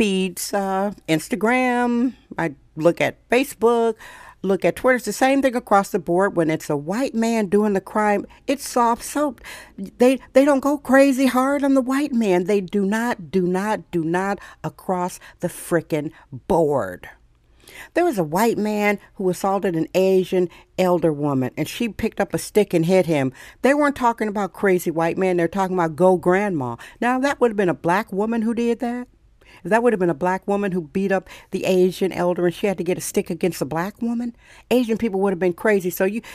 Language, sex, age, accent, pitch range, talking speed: English, female, 60-79, American, 175-235 Hz, 205 wpm